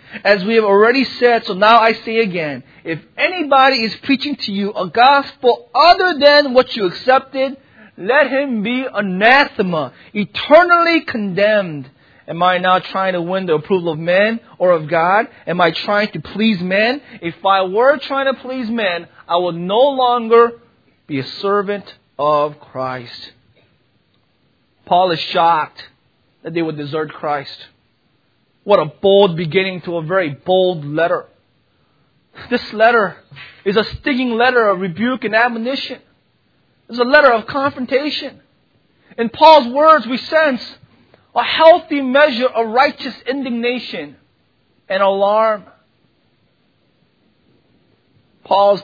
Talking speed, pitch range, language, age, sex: 135 wpm, 170-250 Hz, English, 30-49, male